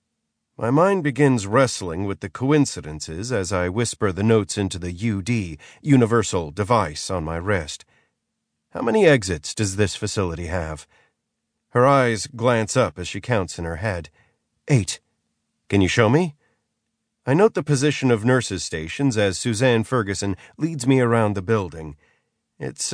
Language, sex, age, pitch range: English, male, 40-59, 95-130 Hz